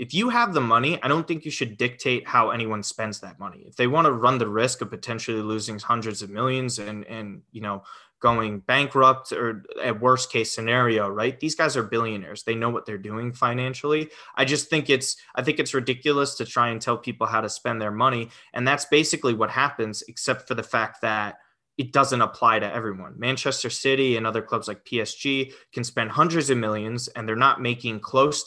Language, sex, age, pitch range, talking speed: English, male, 20-39, 110-130 Hz, 215 wpm